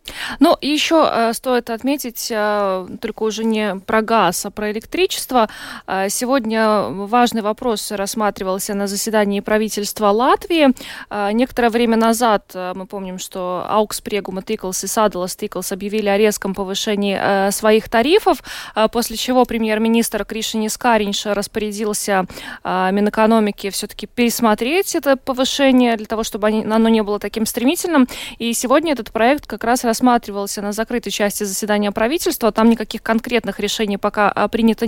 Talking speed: 145 wpm